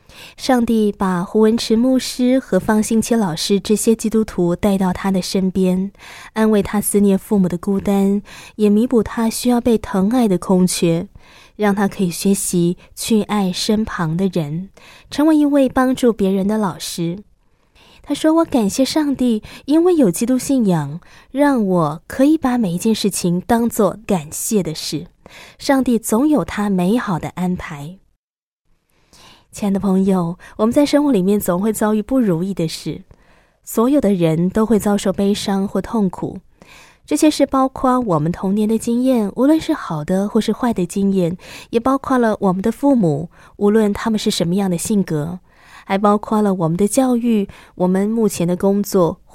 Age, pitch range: 20-39, 185-235 Hz